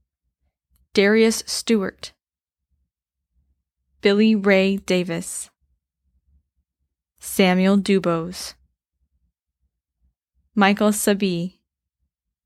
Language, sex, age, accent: English, female, 10-29, American